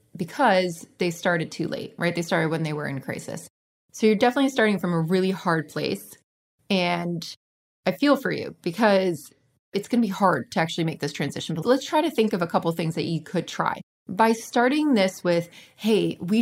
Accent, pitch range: American, 170-220 Hz